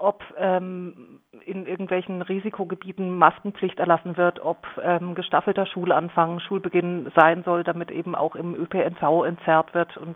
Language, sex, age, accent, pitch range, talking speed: German, female, 40-59, German, 170-195 Hz, 135 wpm